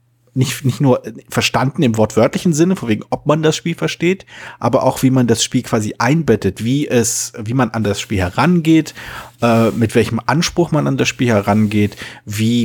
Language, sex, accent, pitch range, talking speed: German, male, German, 115-135 Hz, 190 wpm